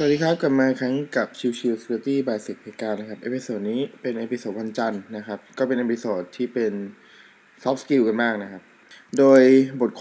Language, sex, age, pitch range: Thai, male, 20-39, 110-130 Hz